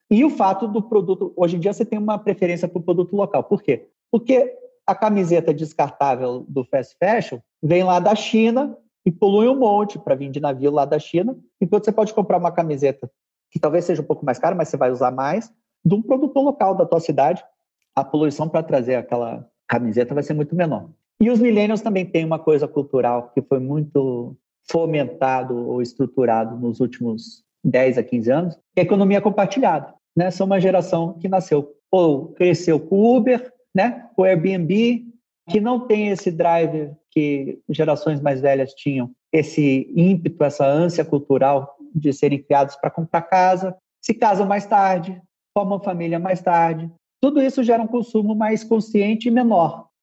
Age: 40-59